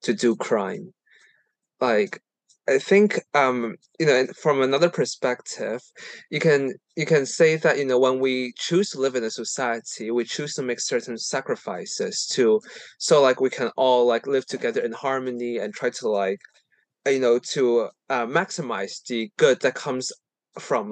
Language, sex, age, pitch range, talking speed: English, male, 20-39, 120-170 Hz, 170 wpm